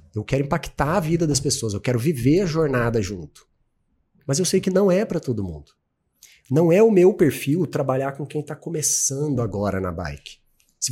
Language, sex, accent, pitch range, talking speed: Portuguese, male, Brazilian, 105-145 Hz, 200 wpm